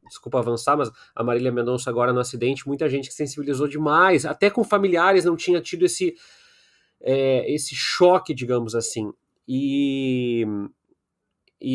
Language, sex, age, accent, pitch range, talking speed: Portuguese, male, 30-49, Brazilian, 125-160 Hz, 140 wpm